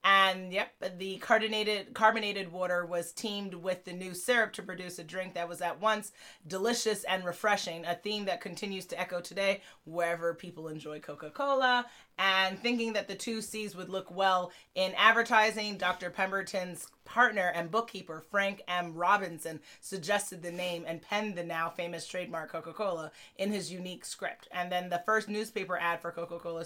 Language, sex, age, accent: English, female, 30-49, American